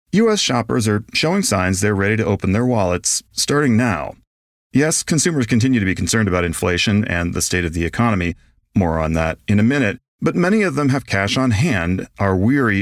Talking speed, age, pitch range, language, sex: 200 wpm, 40-59, 90-120 Hz, English, male